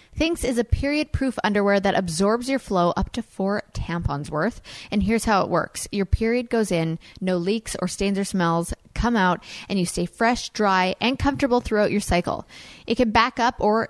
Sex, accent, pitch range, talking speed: female, American, 185-230 Hz, 200 wpm